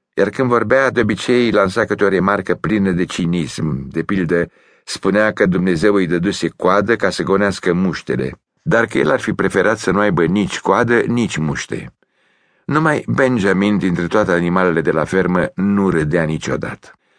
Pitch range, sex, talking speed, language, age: 90-125 Hz, male, 170 wpm, English, 60-79